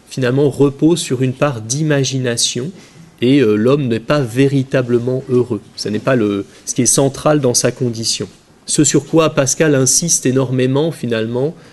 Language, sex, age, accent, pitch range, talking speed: French, male, 30-49, French, 120-155 Hz, 155 wpm